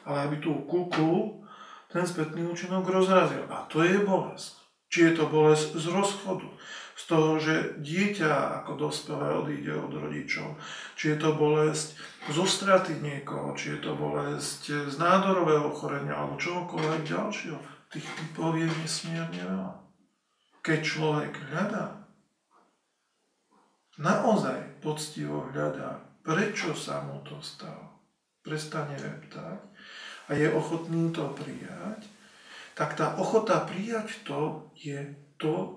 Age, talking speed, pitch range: 40-59, 125 wpm, 150-195 Hz